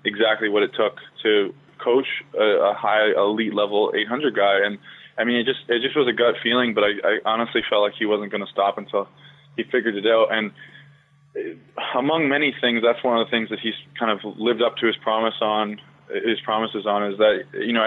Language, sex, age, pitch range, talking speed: English, male, 20-39, 105-130 Hz, 220 wpm